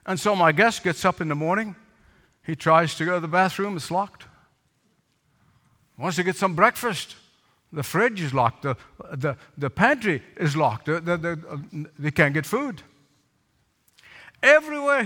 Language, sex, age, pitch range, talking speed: English, male, 60-79, 135-210 Hz, 165 wpm